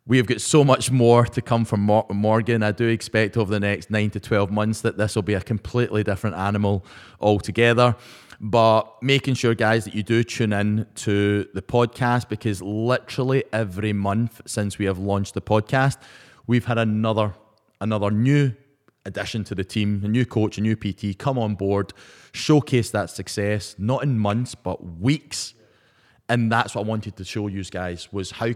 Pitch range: 105-125 Hz